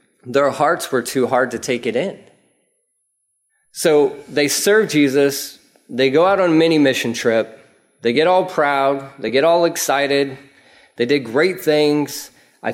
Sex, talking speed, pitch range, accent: male, 160 wpm, 120-160 Hz, American